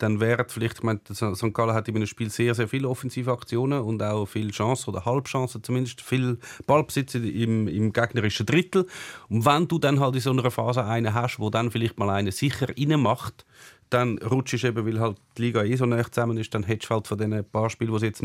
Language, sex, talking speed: German, male, 230 wpm